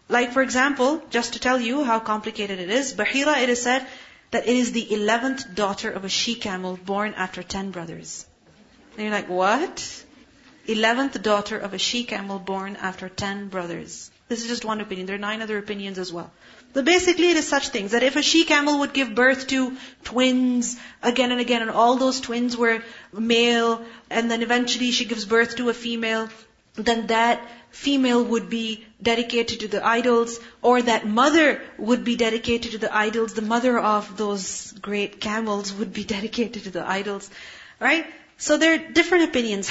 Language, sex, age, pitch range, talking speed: English, female, 30-49, 210-245 Hz, 185 wpm